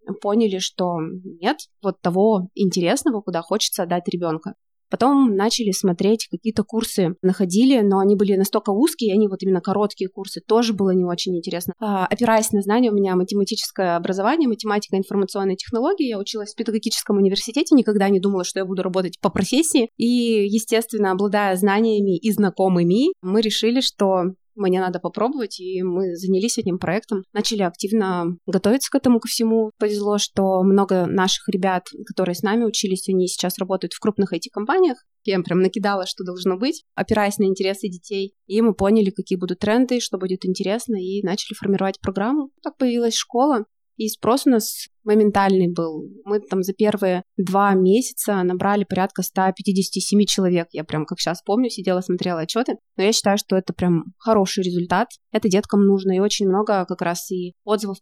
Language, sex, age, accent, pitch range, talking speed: Russian, female, 20-39, native, 185-215 Hz, 170 wpm